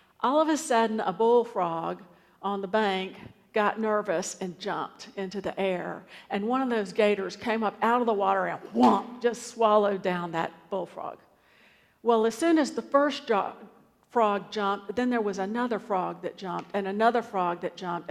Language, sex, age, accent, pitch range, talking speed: English, female, 50-69, American, 195-245 Hz, 175 wpm